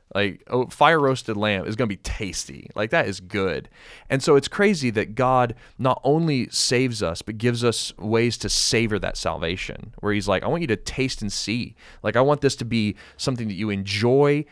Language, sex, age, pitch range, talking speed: English, male, 20-39, 105-135 Hz, 210 wpm